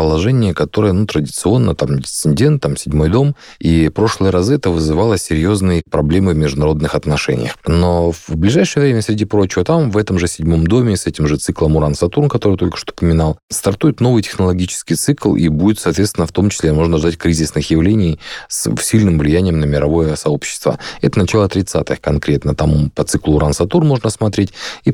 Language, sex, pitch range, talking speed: Russian, male, 80-105 Hz, 175 wpm